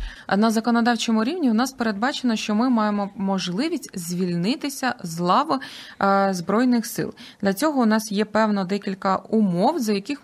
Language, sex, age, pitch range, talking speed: Ukrainian, female, 20-39, 190-235 Hz, 145 wpm